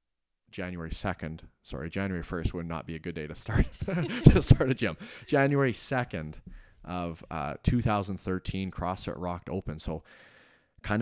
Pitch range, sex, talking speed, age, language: 80-100 Hz, male, 145 wpm, 30-49, English